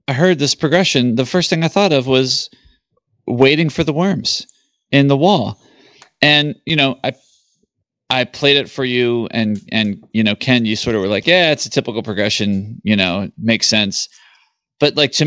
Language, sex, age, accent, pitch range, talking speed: English, male, 30-49, American, 105-145 Hz, 195 wpm